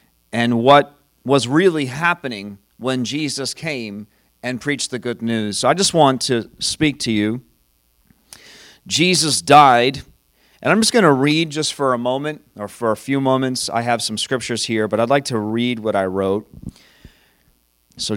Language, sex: English, male